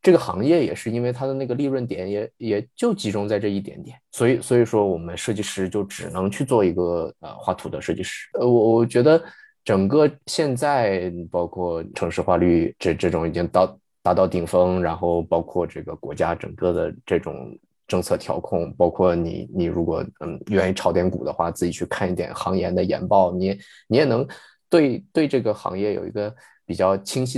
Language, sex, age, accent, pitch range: Chinese, male, 20-39, native, 95-125 Hz